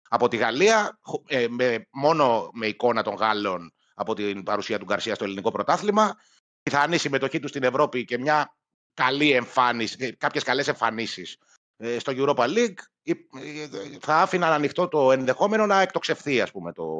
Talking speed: 145 wpm